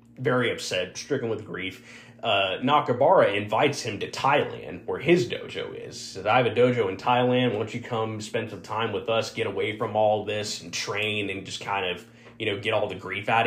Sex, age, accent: male, 20-39, American